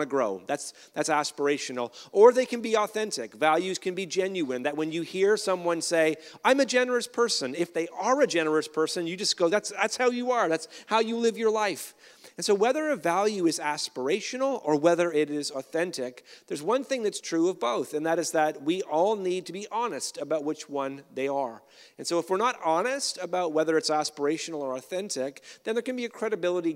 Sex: male